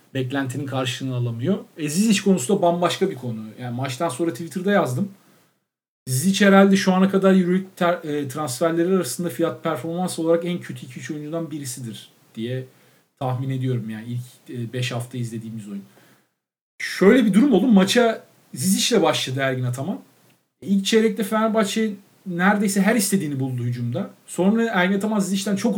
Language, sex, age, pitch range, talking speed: Turkish, male, 50-69, 145-195 Hz, 145 wpm